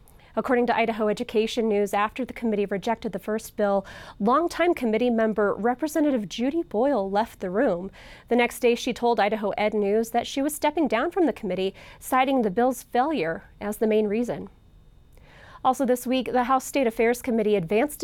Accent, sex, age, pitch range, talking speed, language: American, female, 30-49, 215-260 Hz, 180 wpm, English